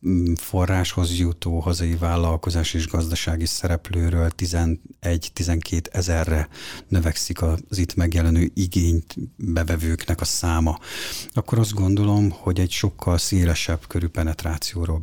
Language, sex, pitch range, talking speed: Hungarian, male, 85-95 Hz, 105 wpm